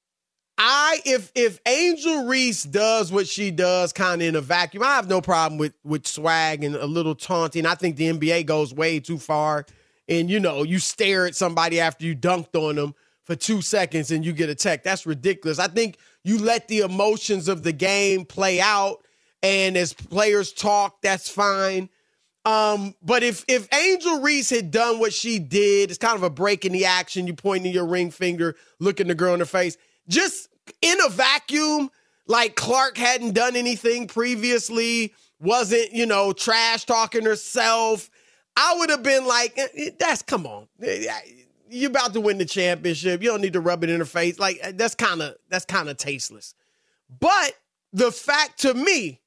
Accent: American